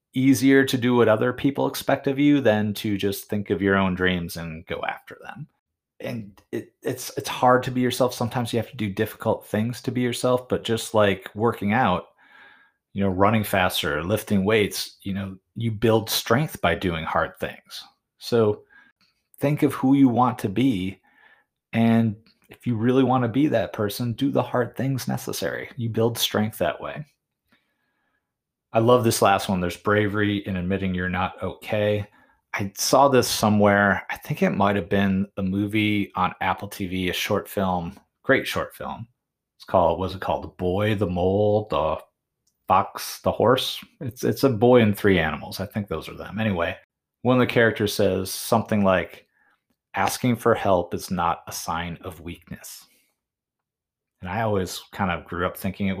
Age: 30-49